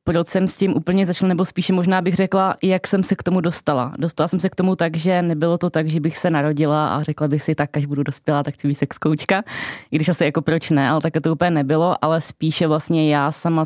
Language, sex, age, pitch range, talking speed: Czech, female, 20-39, 150-170 Hz, 260 wpm